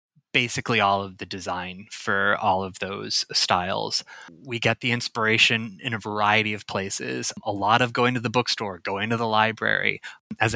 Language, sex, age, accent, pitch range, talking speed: English, male, 20-39, American, 105-125 Hz, 175 wpm